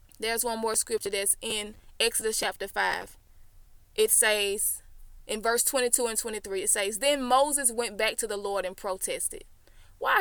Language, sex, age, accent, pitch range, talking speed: English, female, 20-39, American, 210-315 Hz, 165 wpm